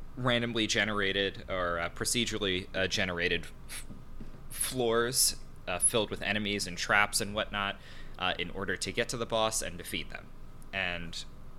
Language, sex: English, male